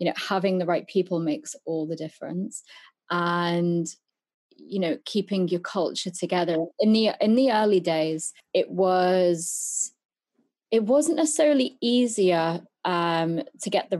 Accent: British